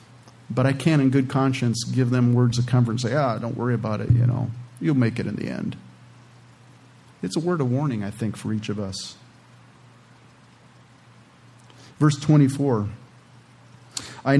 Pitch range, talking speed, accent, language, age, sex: 125-150 Hz, 165 wpm, American, English, 40-59, male